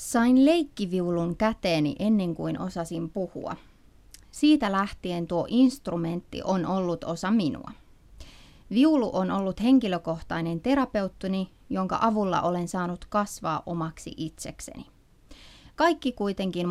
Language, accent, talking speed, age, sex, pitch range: English, Finnish, 105 wpm, 30-49, female, 170-225 Hz